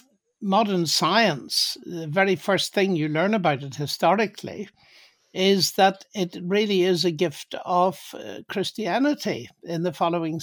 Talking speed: 130 wpm